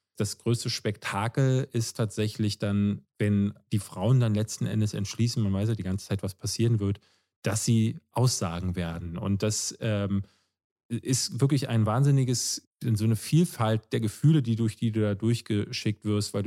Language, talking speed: German, 170 wpm